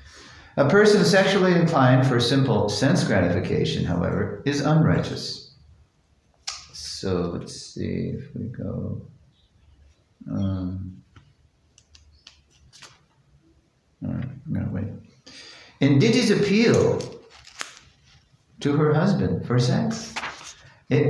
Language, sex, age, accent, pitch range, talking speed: English, male, 60-79, American, 95-135 Hz, 85 wpm